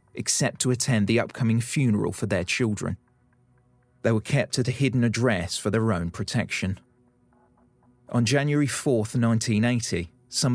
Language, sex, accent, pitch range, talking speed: English, male, British, 110-125 Hz, 140 wpm